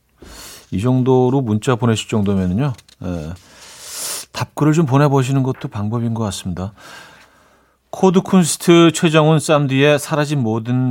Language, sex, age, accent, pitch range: Korean, male, 40-59, native, 100-145 Hz